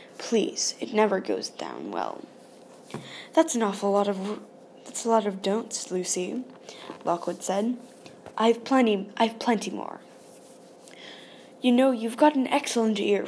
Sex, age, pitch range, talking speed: female, 10-29, 210-255 Hz, 140 wpm